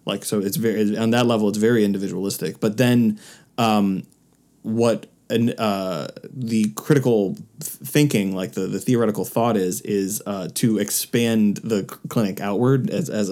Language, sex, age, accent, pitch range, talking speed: English, male, 20-39, American, 105-125 Hz, 150 wpm